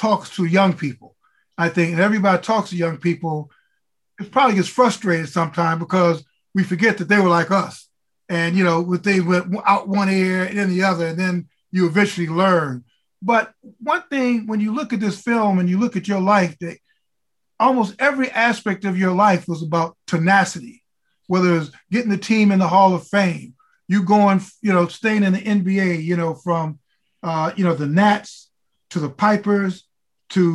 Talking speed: 190 wpm